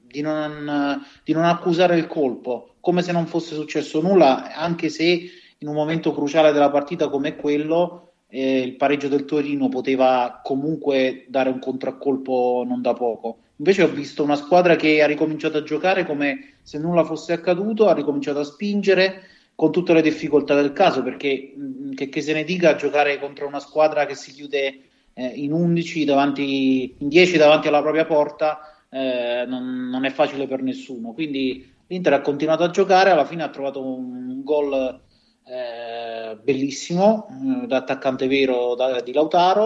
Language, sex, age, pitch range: Italian, male, 30-49, 130-160 Hz